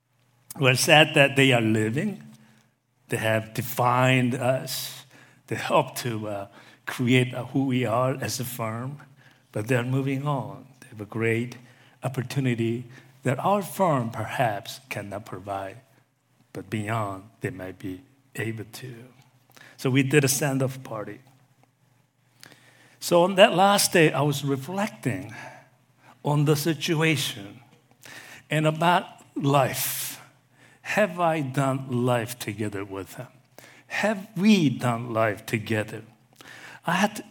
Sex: male